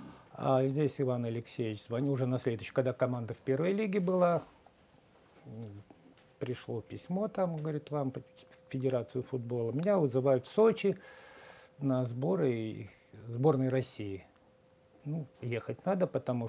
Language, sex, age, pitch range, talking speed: Russian, male, 50-69, 120-160 Hz, 125 wpm